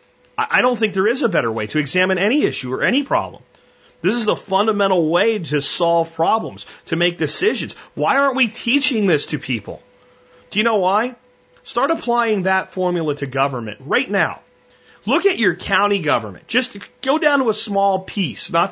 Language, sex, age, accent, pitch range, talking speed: English, male, 30-49, American, 140-210 Hz, 185 wpm